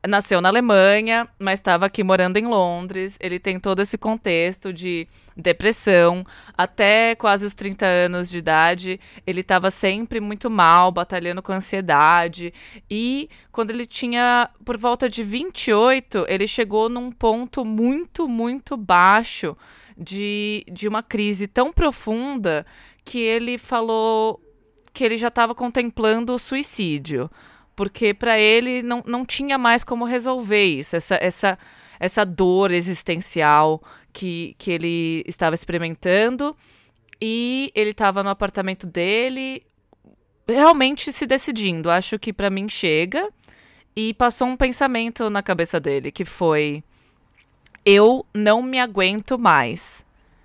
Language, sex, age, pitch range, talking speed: Portuguese, female, 20-39, 185-245 Hz, 130 wpm